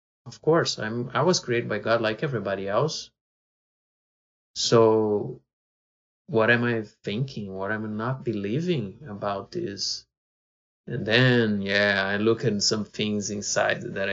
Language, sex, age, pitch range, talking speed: English, male, 20-39, 105-130 Hz, 140 wpm